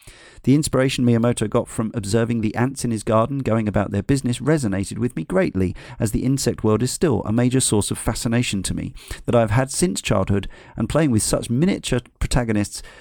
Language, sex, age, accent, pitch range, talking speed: English, male, 40-59, British, 105-130 Hz, 200 wpm